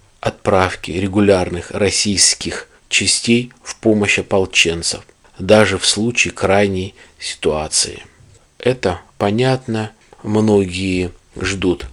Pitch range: 90-110 Hz